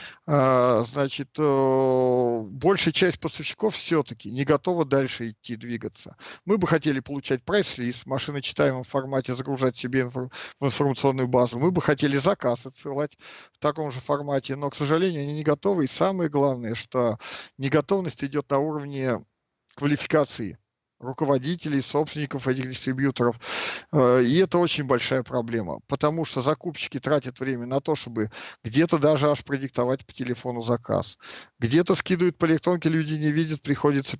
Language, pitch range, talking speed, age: Russian, 130-155 Hz, 140 wpm, 50-69